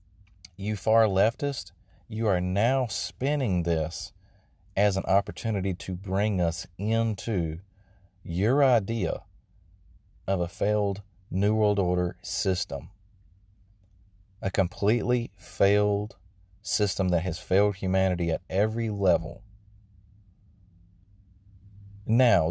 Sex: male